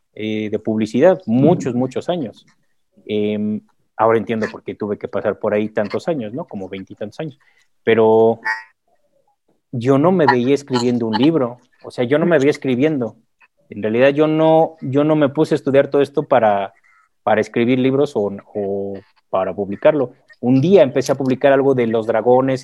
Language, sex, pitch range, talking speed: Spanish, male, 125-155 Hz, 170 wpm